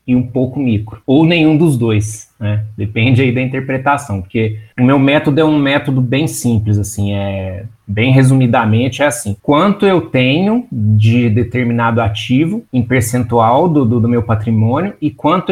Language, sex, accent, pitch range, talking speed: Portuguese, male, Brazilian, 115-155 Hz, 165 wpm